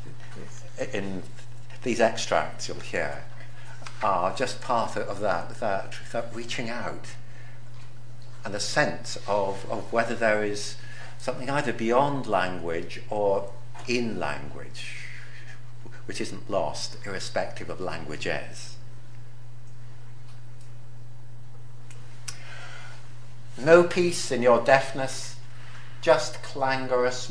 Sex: male